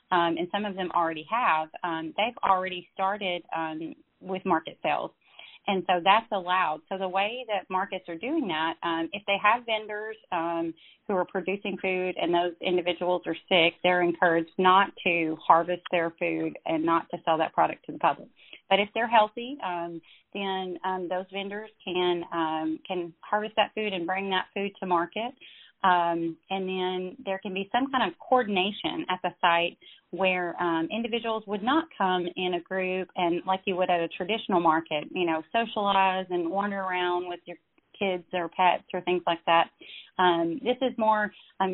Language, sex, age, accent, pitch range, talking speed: English, female, 30-49, American, 170-205 Hz, 185 wpm